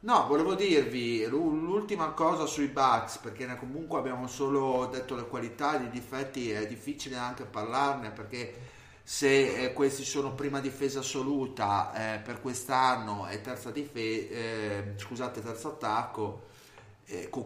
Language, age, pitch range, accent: Italian, 30-49, 110-135 Hz, native